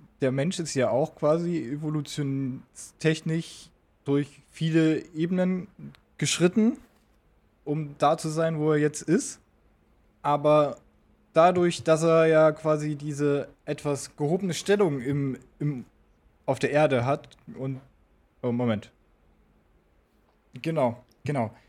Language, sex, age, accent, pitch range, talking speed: German, male, 20-39, German, 120-150 Hz, 105 wpm